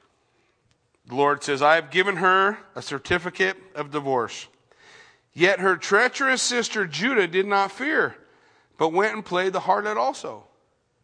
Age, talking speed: 40-59, 140 wpm